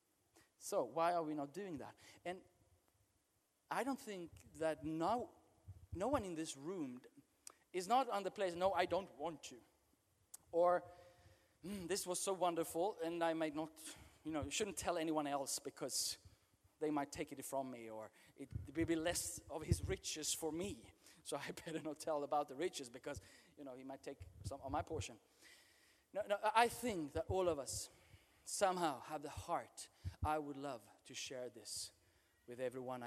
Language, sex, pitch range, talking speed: Swedish, male, 120-160 Hz, 180 wpm